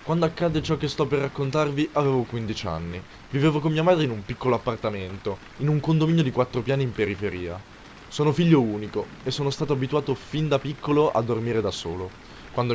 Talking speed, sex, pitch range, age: 195 wpm, male, 105-140 Hz, 20-39